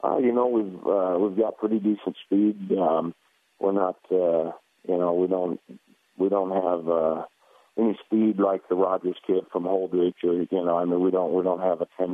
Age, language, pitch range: 50-69, English, 90-100 Hz